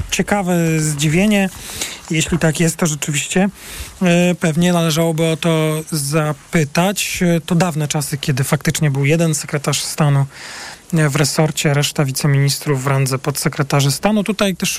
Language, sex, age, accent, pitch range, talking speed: Polish, male, 40-59, native, 150-175 Hz, 125 wpm